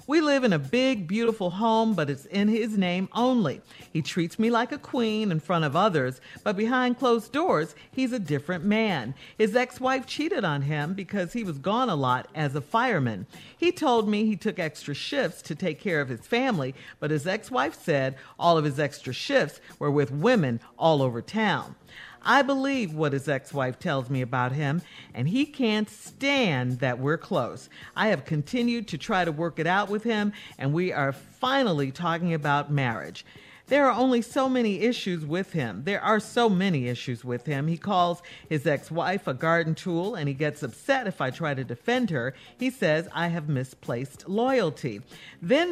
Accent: American